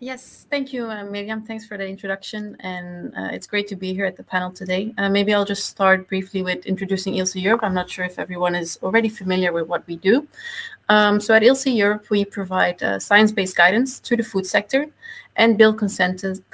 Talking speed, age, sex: 215 wpm, 30-49, female